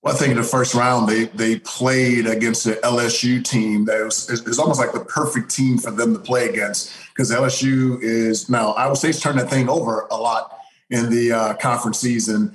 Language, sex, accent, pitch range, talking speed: English, male, American, 115-130 Hz, 220 wpm